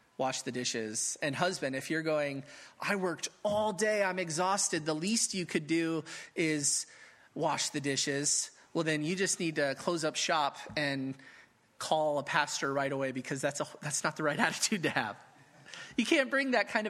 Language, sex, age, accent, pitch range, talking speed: English, male, 30-49, American, 155-215 Hz, 190 wpm